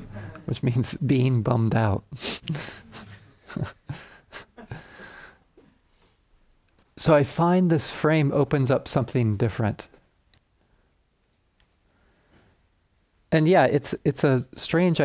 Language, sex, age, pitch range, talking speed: English, male, 40-59, 105-140 Hz, 80 wpm